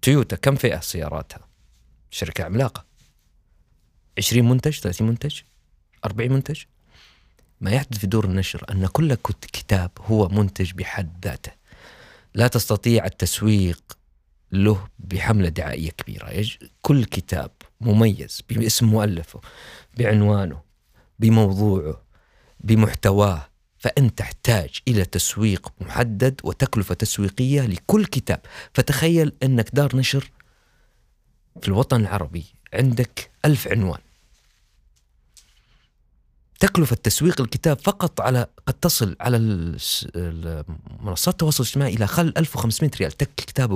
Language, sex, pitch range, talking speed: Arabic, male, 90-125 Hz, 105 wpm